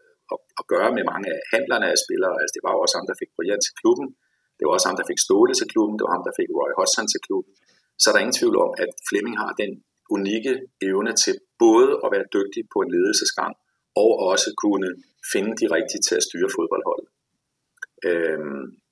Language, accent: Danish, native